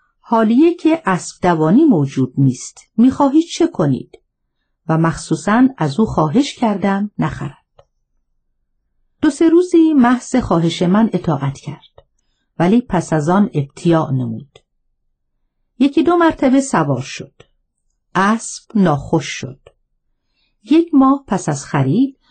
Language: Persian